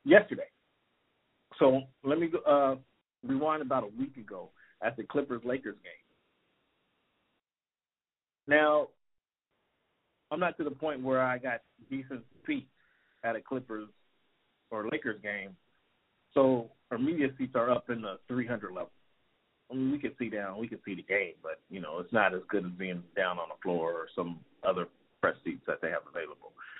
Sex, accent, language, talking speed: male, American, English, 165 wpm